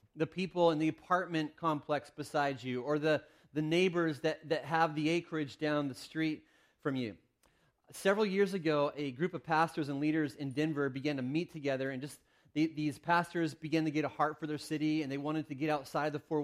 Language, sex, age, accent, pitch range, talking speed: English, male, 30-49, American, 145-175 Hz, 210 wpm